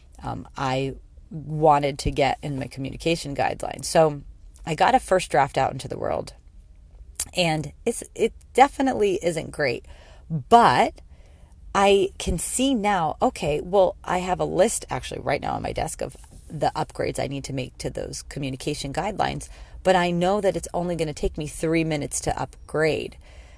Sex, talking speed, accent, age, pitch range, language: female, 170 wpm, American, 30-49, 140-190 Hz, English